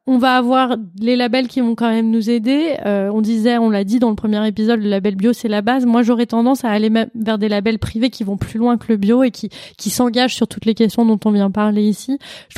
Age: 20-39